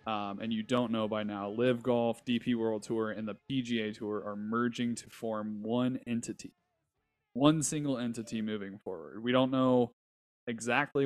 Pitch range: 110-125 Hz